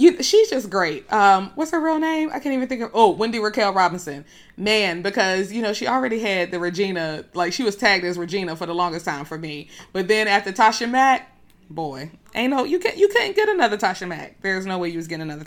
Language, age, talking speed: English, 20-39, 240 wpm